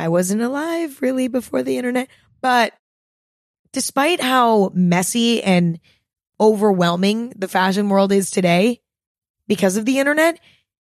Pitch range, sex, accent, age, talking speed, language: 185-235 Hz, female, American, 20-39, 120 wpm, English